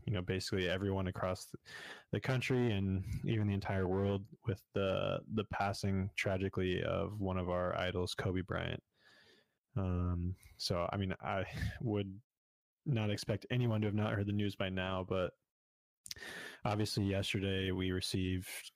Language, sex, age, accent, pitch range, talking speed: English, male, 20-39, American, 90-105 Hz, 145 wpm